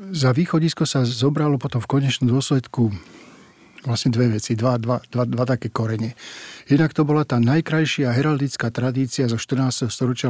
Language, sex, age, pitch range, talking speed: Slovak, male, 50-69, 120-140 Hz, 155 wpm